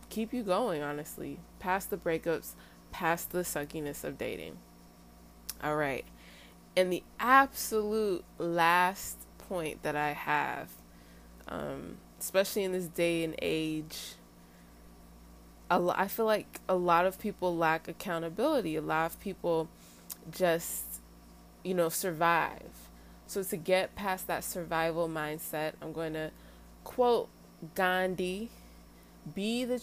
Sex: female